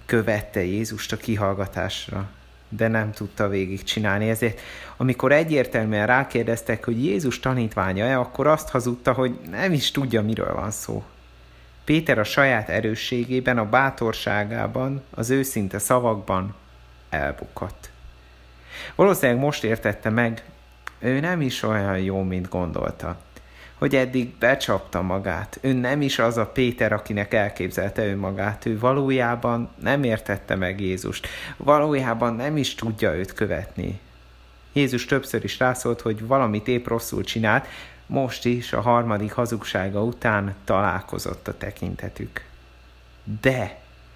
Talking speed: 125 wpm